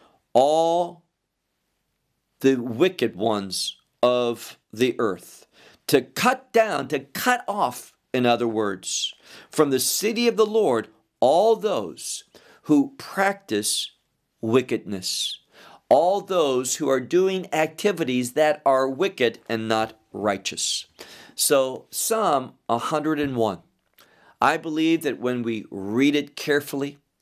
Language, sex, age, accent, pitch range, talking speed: English, male, 50-69, American, 120-185 Hz, 110 wpm